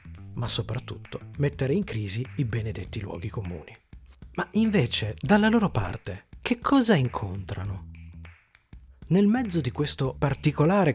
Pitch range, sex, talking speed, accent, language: 115-155 Hz, male, 120 wpm, native, Italian